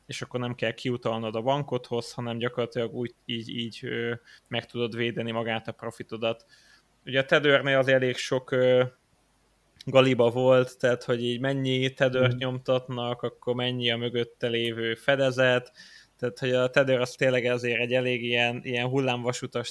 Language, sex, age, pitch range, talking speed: Hungarian, male, 20-39, 120-130 Hz, 150 wpm